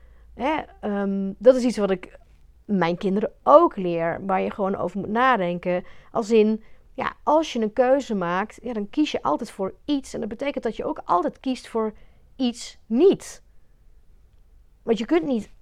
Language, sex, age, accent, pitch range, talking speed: Dutch, female, 40-59, Dutch, 195-240 Hz, 180 wpm